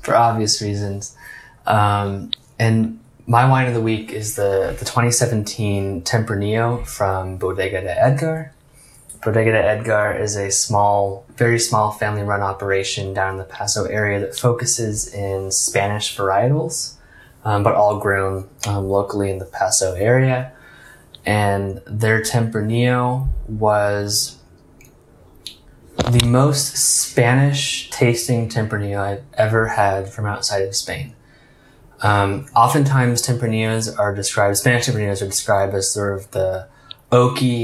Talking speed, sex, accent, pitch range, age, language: 125 wpm, male, American, 100-120 Hz, 20-39, English